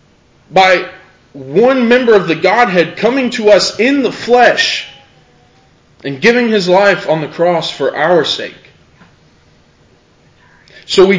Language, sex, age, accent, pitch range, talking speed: English, male, 20-39, American, 145-205 Hz, 130 wpm